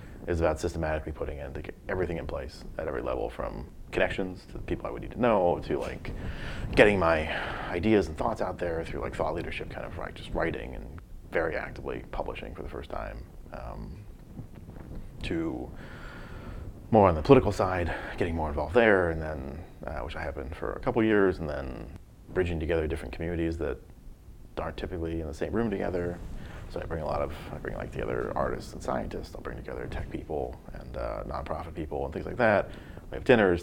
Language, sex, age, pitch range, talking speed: English, male, 30-49, 75-90 Hz, 200 wpm